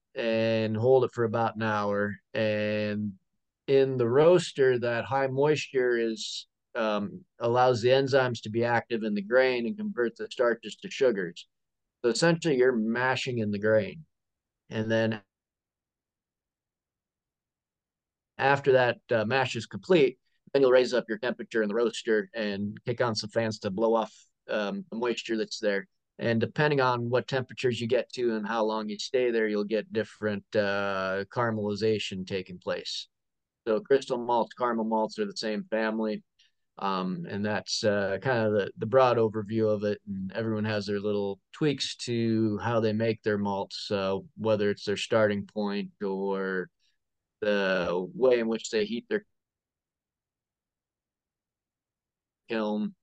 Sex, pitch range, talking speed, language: male, 105-120 Hz, 155 wpm, English